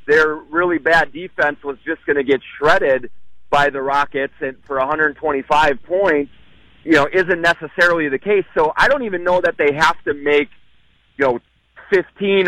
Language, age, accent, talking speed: English, 30-49, American, 175 wpm